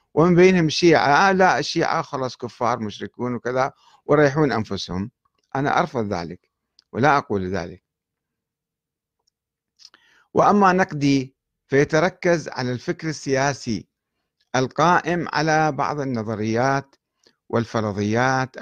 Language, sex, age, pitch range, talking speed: Arabic, male, 50-69, 115-170 Hz, 90 wpm